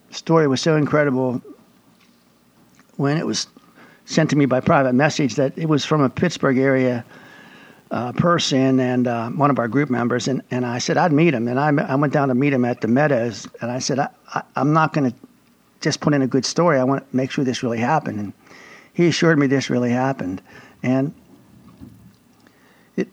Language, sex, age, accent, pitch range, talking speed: English, male, 60-79, American, 125-150 Hz, 205 wpm